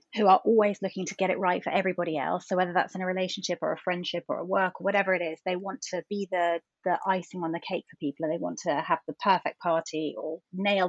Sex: female